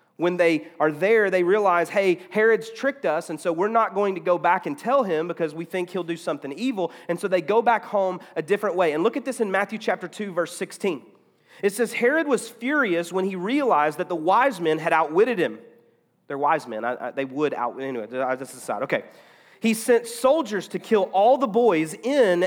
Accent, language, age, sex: American, English, 30-49, male